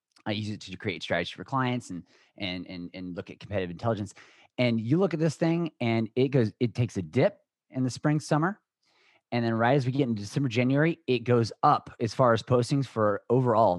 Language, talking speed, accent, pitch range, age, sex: English, 220 wpm, American, 110-135 Hz, 30-49, male